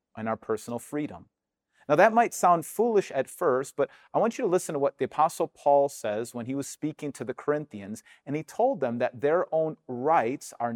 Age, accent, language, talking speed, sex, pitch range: 40-59, American, English, 220 wpm, male, 120-160 Hz